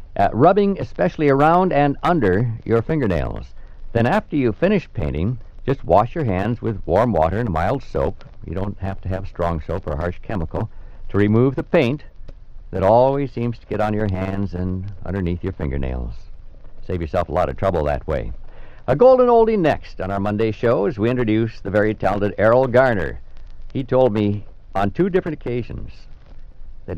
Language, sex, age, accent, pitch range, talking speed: English, male, 60-79, American, 90-115 Hz, 180 wpm